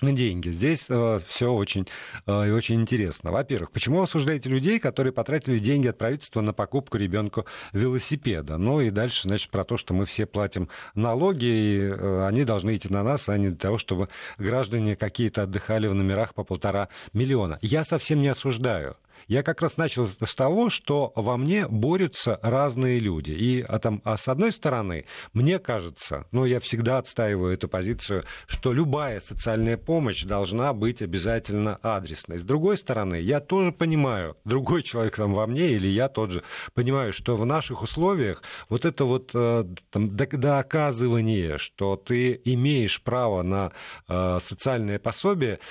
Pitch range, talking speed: 100-135 Hz, 165 wpm